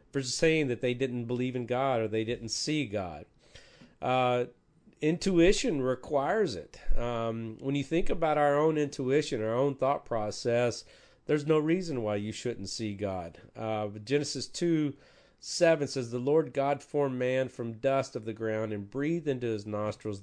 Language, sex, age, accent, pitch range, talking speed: English, male, 40-59, American, 110-135 Hz, 165 wpm